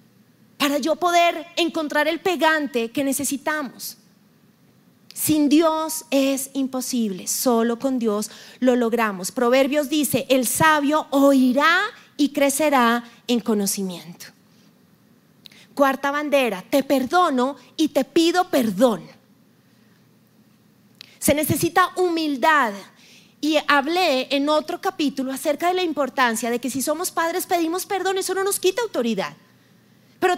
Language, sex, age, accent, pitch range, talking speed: Spanish, female, 30-49, Colombian, 250-335 Hz, 115 wpm